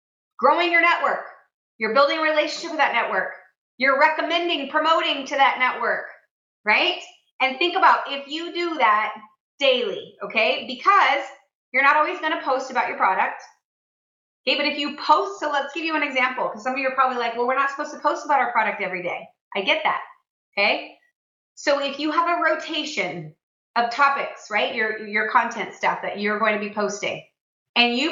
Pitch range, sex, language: 235-310 Hz, female, English